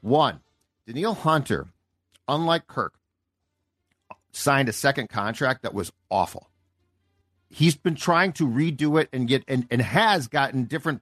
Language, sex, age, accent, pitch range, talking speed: English, male, 50-69, American, 95-150 Hz, 135 wpm